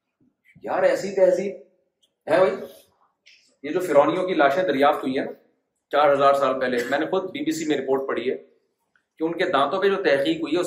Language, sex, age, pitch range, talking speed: Urdu, male, 40-59, 180-255 Hz, 210 wpm